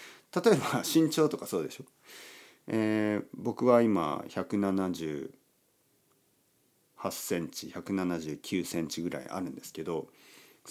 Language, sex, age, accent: Japanese, male, 40-59, native